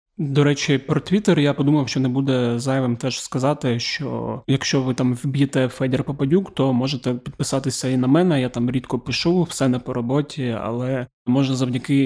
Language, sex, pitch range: Ukrainian, male, 125-145 Hz